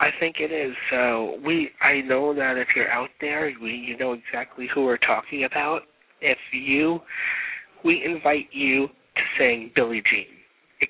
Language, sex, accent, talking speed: English, male, American, 170 wpm